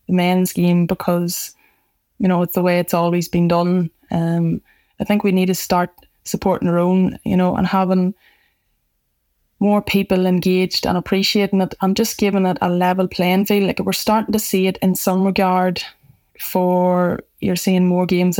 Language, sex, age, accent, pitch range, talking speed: English, female, 20-39, Irish, 175-195 Hz, 180 wpm